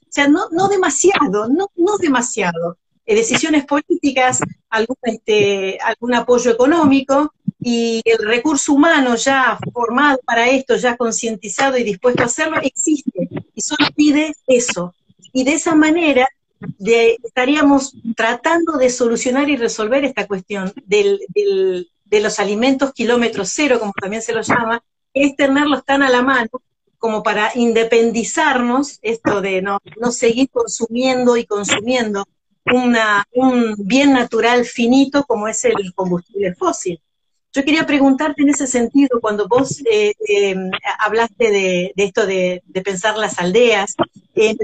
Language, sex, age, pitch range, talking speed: Spanish, female, 40-59, 215-285 Hz, 140 wpm